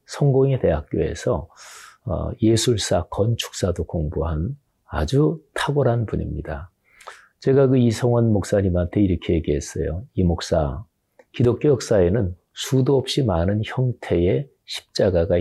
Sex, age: male, 40-59